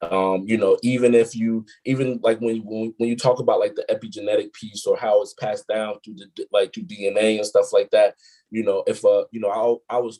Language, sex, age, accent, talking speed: English, male, 20-39, American, 240 wpm